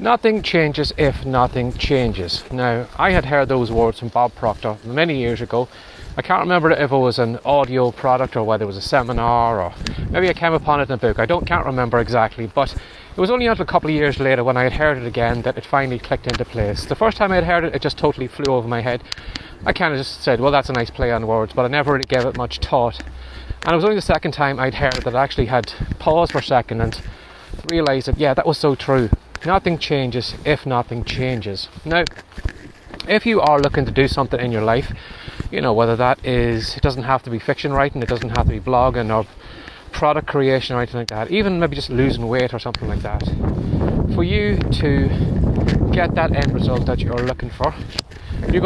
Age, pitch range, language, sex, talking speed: 30-49, 115-145 Hz, English, male, 235 wpm